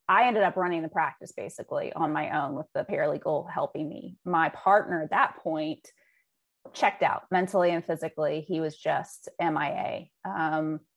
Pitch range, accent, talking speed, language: 160-200 Hz, American, 165 wpm, English